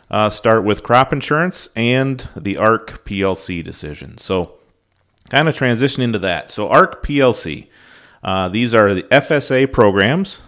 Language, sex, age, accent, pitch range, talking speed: English, male, 40-59, American, 95-120 Hz, 145 wpm